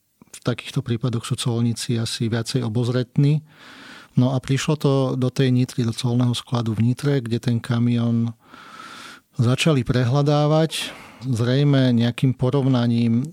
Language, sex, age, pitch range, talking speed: Slovak, male, 40-59, 115-130 Hz, 125 wpm